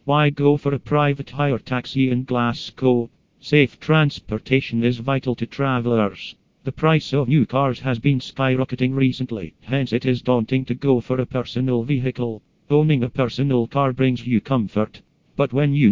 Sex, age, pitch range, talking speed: male, 40-59, 120-135 Hz, 165 wpm